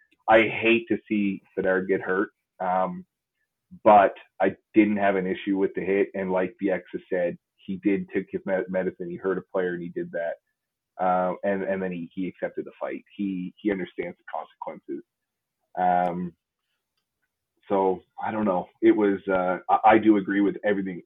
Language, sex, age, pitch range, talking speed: English, male, 30-49, 95-105 Hz, 180 wpm